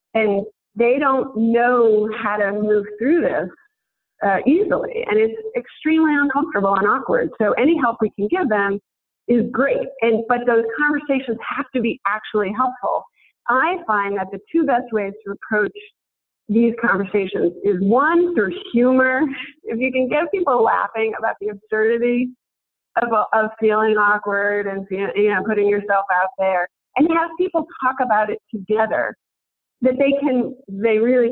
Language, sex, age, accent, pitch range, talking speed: English, female, 40-59, American, 205-260 Hz, 155 wpm